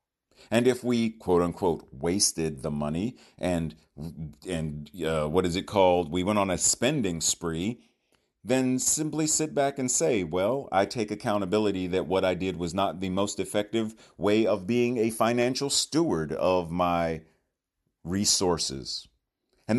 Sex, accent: male, American